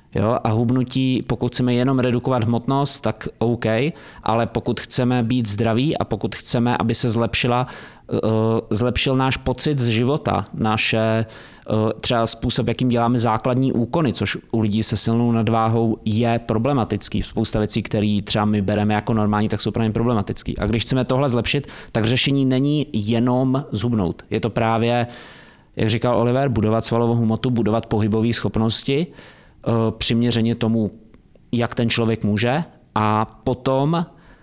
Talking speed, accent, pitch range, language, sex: 150 wpm, native, 110-120 Hz, Czech, male